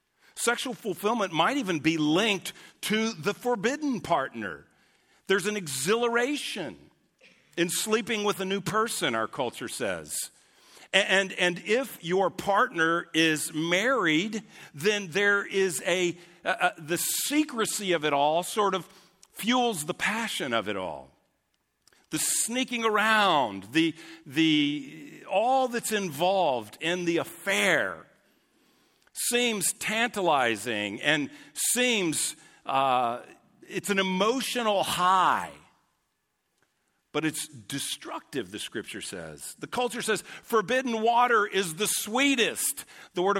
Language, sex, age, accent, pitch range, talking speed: English, male, 50-69, American, 165-225 Hz, 120 wpm